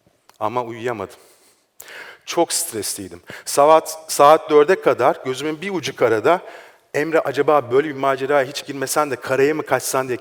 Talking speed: 140 wpm